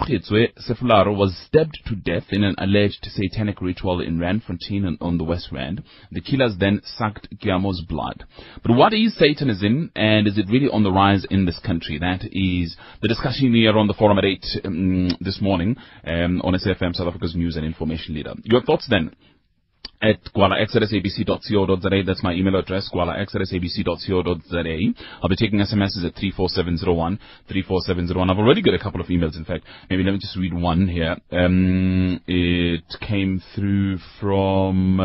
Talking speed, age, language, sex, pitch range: 175 wpm, 30-49, English, male, 90-115 Hz